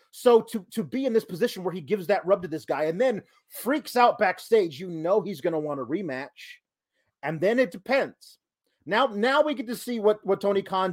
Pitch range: 175-235 Hz